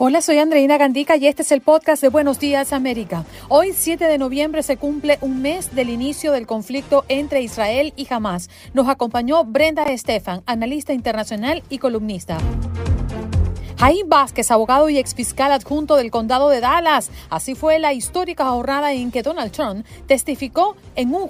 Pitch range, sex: 230-300 Hz, female